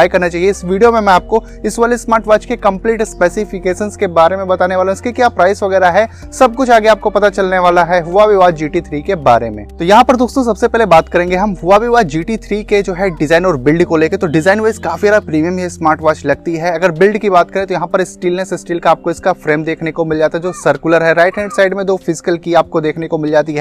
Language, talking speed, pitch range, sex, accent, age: Hindi, 30 wpm, 175-215 Hz, male, native, 20-39